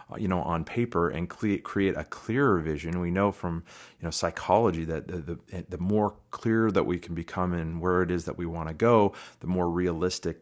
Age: 30-49